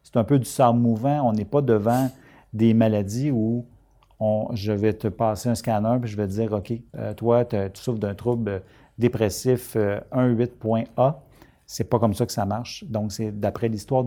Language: French